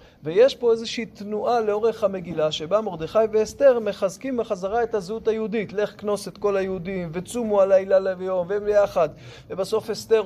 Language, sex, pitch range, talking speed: Hebrew, male, 185-245 Hz, 145 wpm